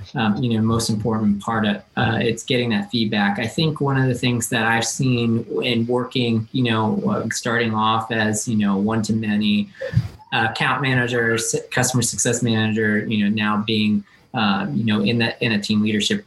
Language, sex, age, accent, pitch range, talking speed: English, male, 20-39, American, 110-125 Hz, 185 wpm